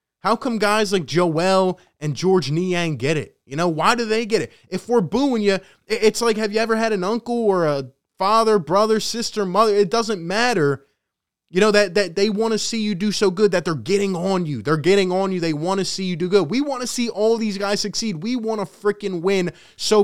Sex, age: male, 20-39